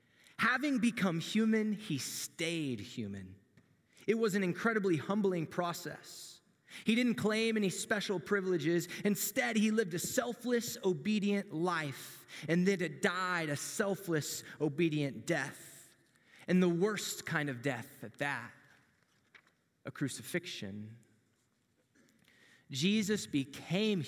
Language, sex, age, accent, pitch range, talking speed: English, male, 20-39, American, 130-200 Hz, 110 wpm